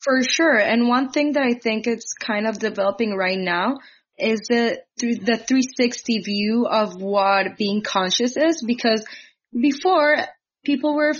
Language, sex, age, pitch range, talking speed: English, female, 20-39, 200-235 Hz, 150 wpm